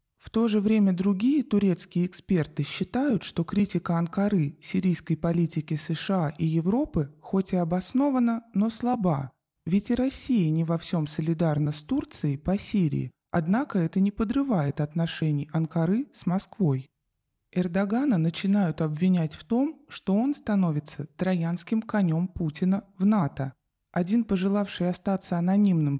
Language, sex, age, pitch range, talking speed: Russian, male, 20-39, 160-205 Hz, 130 wpm